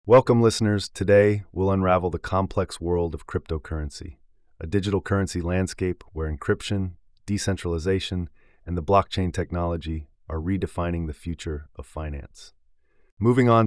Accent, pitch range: American, 80-95 Hz